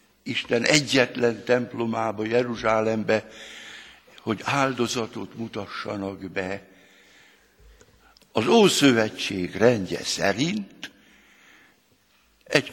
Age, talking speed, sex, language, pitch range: 60-79, 60 wpm, male, Hungarian, 110-135 Hz